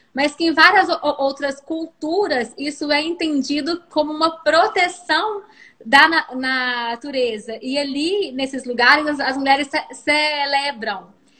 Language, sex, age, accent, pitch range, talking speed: Portuguese, female, 20-39, Brazilian, 260-315 Hz, 110 wpm